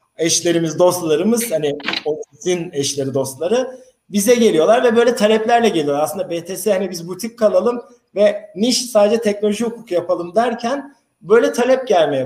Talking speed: 145 wpm